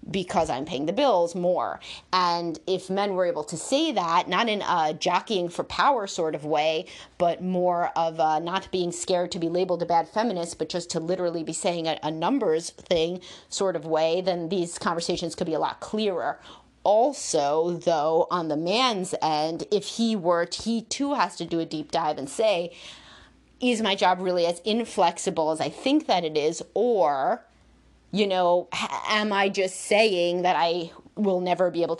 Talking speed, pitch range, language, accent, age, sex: 190 wpm, 165-195 Hz, English, American, 30-49, female